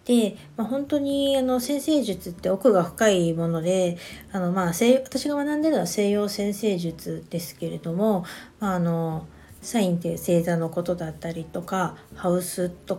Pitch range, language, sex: 170-235 Hz, Japanese, female